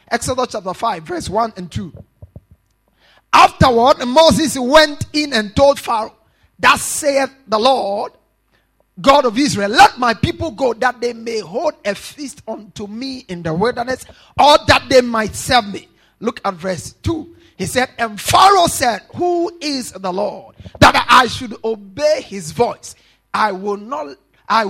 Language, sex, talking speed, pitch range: English, male, 160 wpm, 210-305 Hz